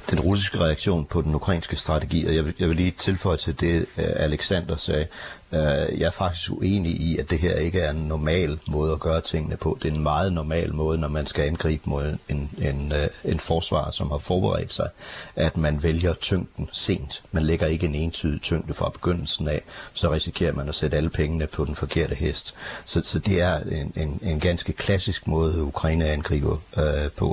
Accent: native